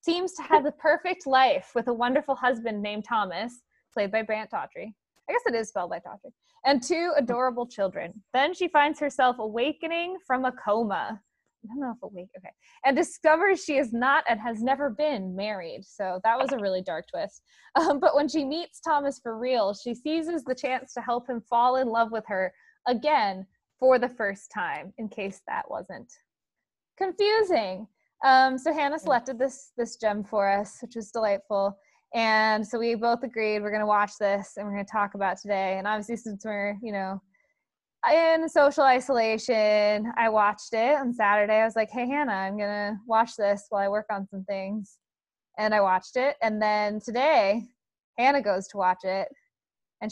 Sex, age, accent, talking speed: female, 20-39, American, 190 wpm